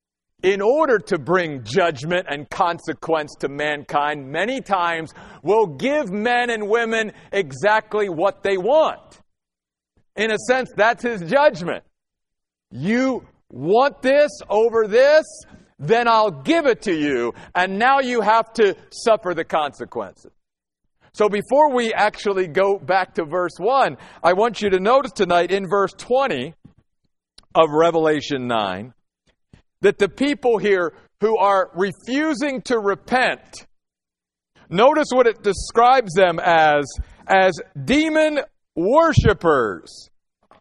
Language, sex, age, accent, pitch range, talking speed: English, male, 50-69, American, 170-255 Hz, 125 wpm